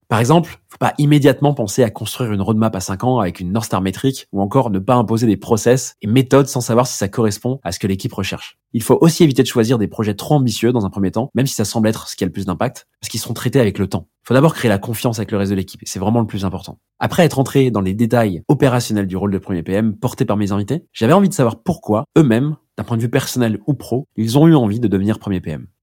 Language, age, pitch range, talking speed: French, 20-39, 100-130 Hz, 285 wpm